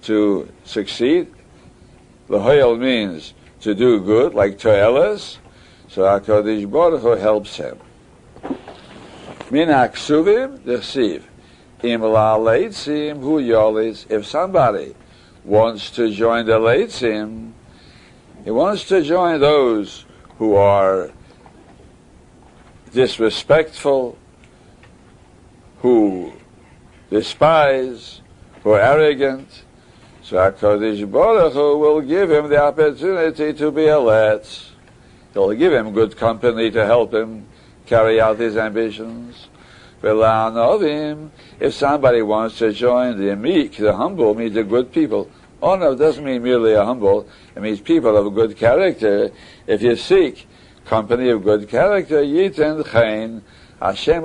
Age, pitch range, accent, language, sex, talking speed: 60-79, 110-150 Hz, American, English, male, 115 wpm